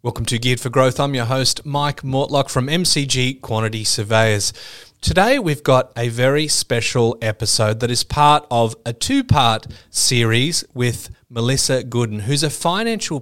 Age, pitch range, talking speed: 30-49, 110-135 Hz, 155 wpm